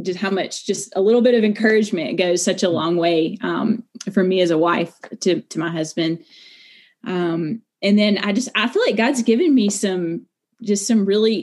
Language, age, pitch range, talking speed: English, 20-39, 170-210 Hz, 205 wpm